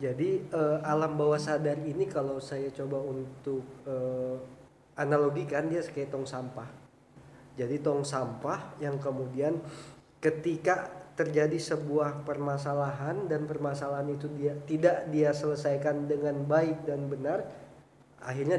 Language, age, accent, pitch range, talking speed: Indonesian, 20-39, native, 140-155 Hz, 120 wpm